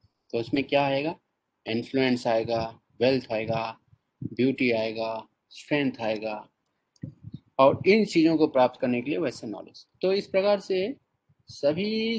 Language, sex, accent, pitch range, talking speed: Hindi, male, native, 120-160 Hz, 135 wpm